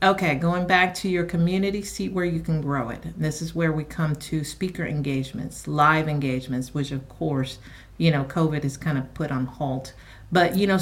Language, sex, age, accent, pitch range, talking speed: English, female, 50-69, American, 160-200 Hz, 205 wpm